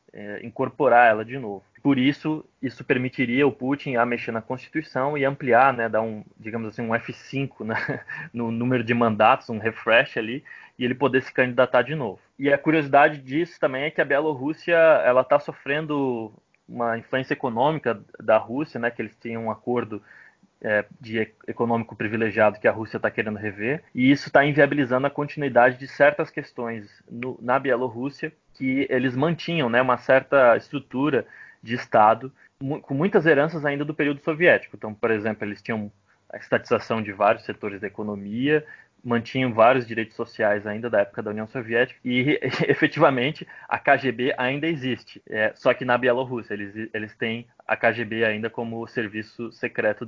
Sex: male